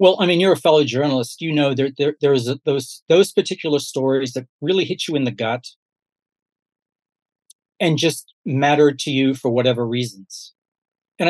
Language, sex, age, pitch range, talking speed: English, male, 40-59, 135-180 Hz, 175 wpm